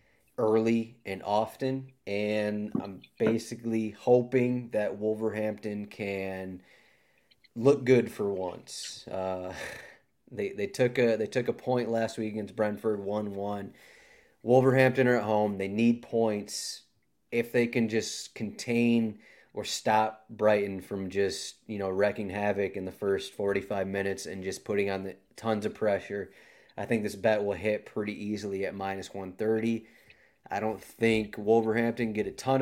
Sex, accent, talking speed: male, American, 150 wpm